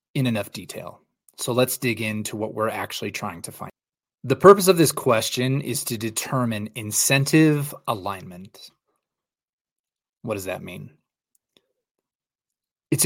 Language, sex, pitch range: English, male, 105-135 Hz